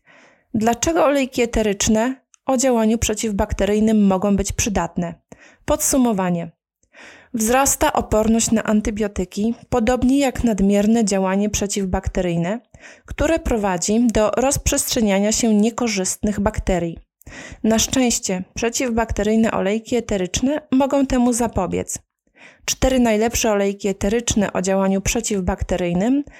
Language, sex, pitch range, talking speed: Polish, female, 200-245 Hz, 95 wpm